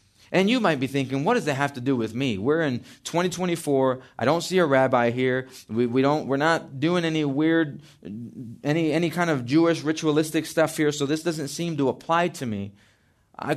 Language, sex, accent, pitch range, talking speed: English, male, American, 130-185 Hz, 210 wpm